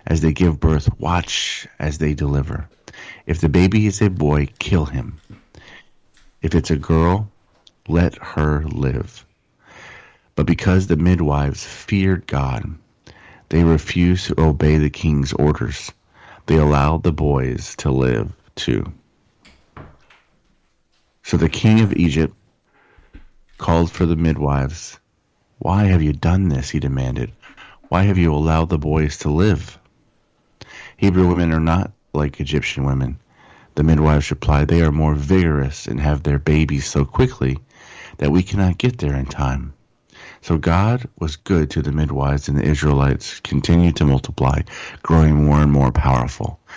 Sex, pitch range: male, 70-85 Hz